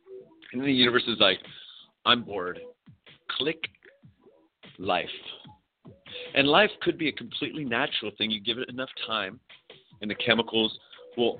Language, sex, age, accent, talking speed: English, male, 40-59, American, 135 wpm